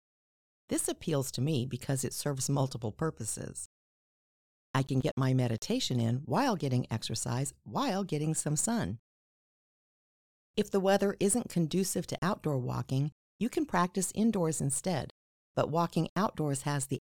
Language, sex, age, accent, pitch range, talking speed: English, female, 50-69, American, 130-195 Hz, 140 wpm